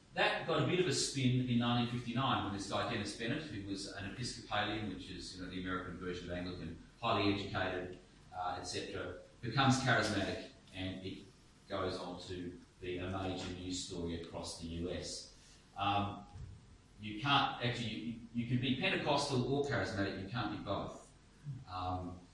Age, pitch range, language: 30-49, 90-120 Hz, English